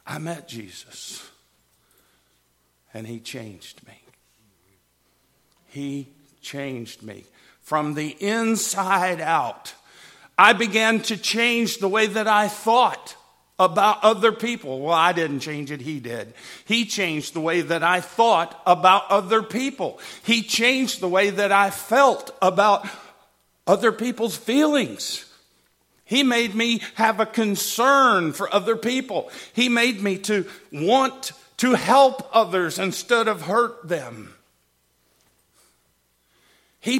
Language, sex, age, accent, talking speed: English, male, 50-69, American, 125 wpm